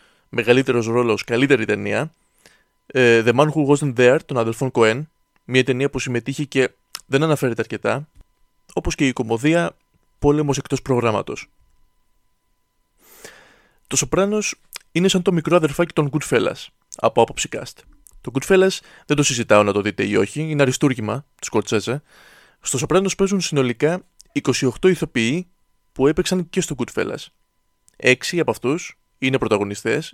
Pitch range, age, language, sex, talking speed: 120-155 Hz, 20-39, Greek, male, 135 wpm